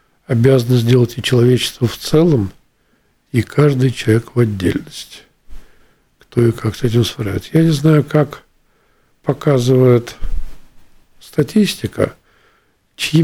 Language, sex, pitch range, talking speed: Russian, male, 110-135 Hz, 110 wpm